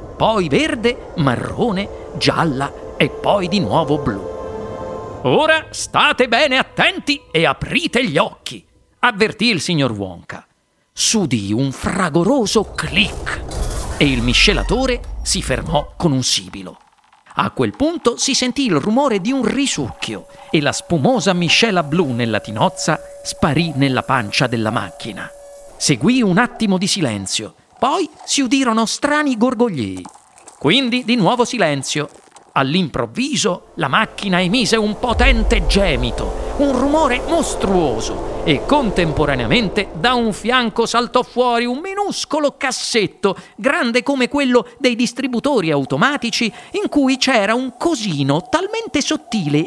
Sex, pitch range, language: male, 175-275 Hz, Italian